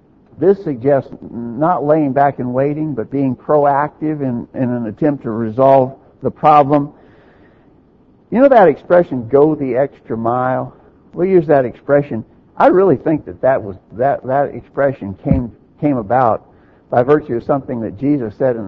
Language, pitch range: English, 120-150 Hz